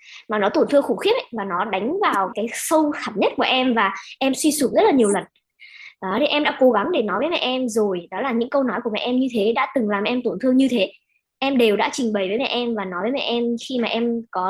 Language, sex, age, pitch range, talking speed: Vietnamese, male, 10-29, 220-280 Hz, 295 wpm